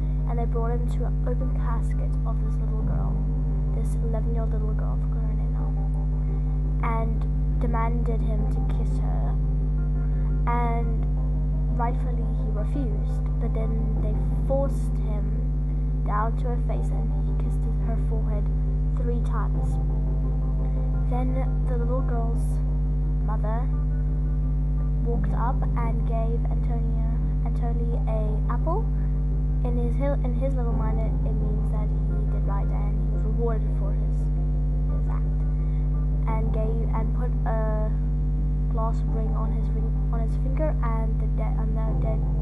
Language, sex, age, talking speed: English, female, 10-29, 140 wpm